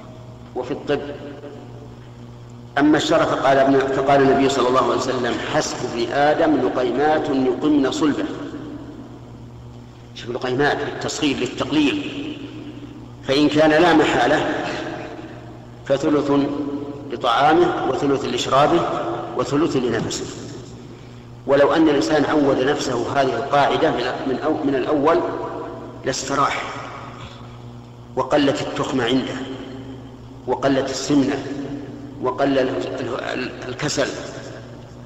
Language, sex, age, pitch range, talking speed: Arabic, male, 50-69, 120-155 Hz, 90 wpm